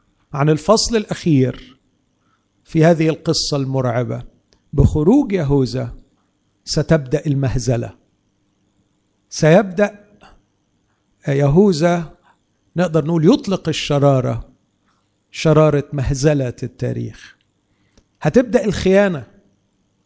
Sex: male